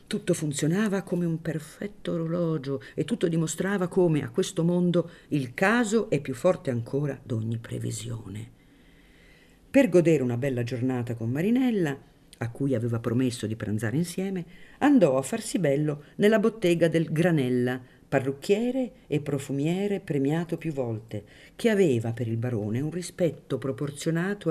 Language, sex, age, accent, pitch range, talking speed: Italian, female, 50-69, native, 120-175 Hz, 140 wpm